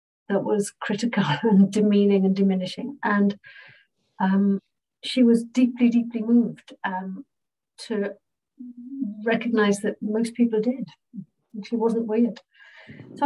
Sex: female